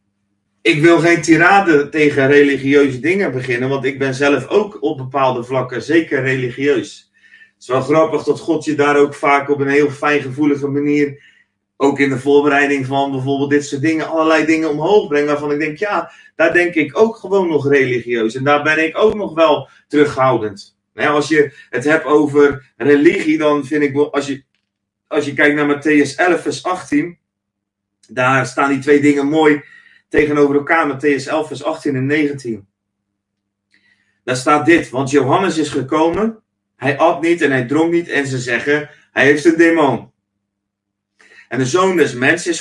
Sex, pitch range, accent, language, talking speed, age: male, 130-155 Hz, Dutch, Dutch, 180 wpm, 30-49